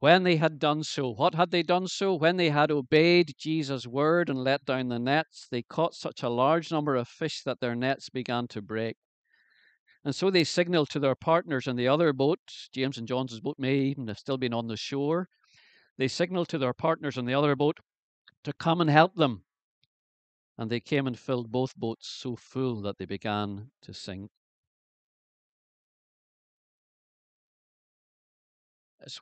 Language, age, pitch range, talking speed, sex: English, 50-69, 115-150 Hz, 180 wpm, male